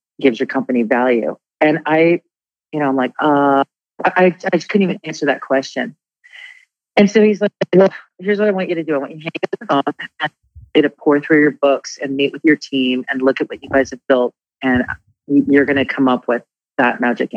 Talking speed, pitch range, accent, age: 210 wpm, 130-165 Hz, American, 40-59